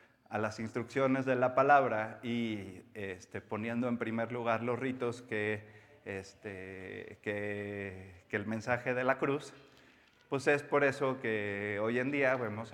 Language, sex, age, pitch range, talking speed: Spanish, male, 30-49, 105-130 Hz, 150 wpm